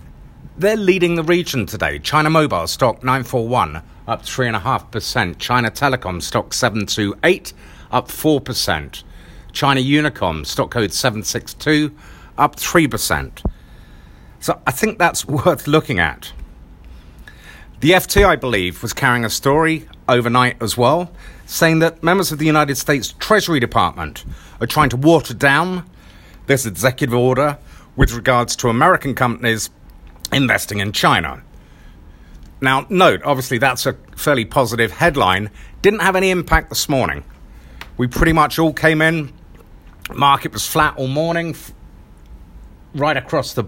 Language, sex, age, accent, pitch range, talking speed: English, male, 50-69, British, 100-155 Hz, 130 wpm